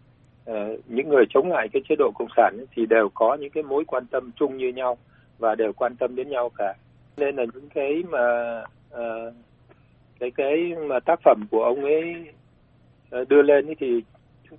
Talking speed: 200 wpm